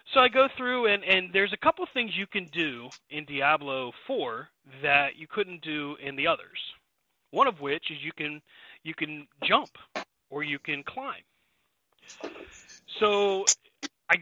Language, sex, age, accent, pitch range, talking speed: English, male, 30-49, American, 150-200 Hz, 155 wpm